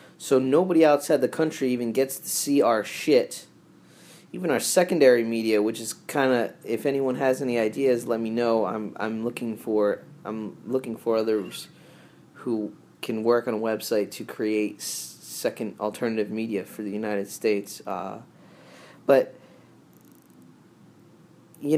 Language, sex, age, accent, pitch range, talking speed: English, male, 20-39, American, 110-135 Hz, 145 wpm